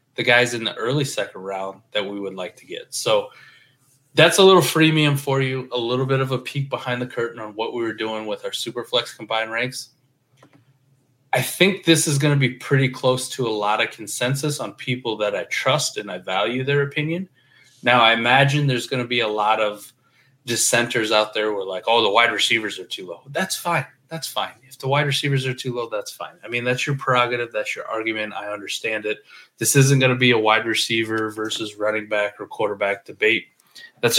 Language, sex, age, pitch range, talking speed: English, male, 20-39, 115-140 Hz, 220 wpm